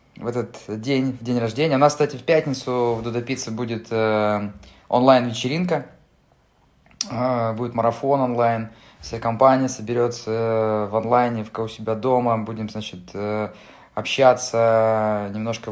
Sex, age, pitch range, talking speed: male, 20-39, 110-130 Hz, 120 wpm